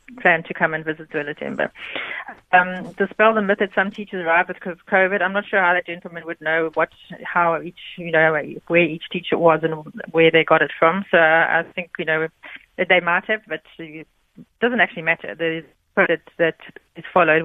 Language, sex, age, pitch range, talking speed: English, female, 30-49, 165-190 Hz, 205 wpm